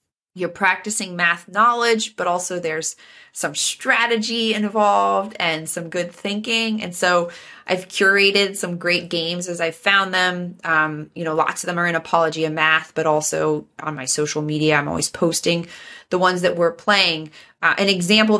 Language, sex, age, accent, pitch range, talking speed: English, female, 20-39, American, 165-215 Hz, 175 wpm